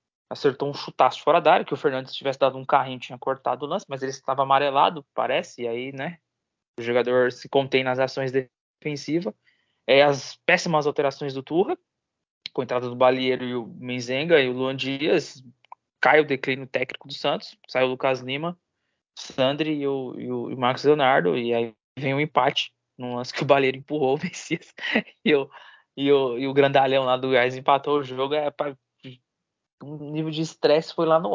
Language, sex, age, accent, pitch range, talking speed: Portuguese, male, 20-39, Brazilian, 125-150 Hz, 205 wpm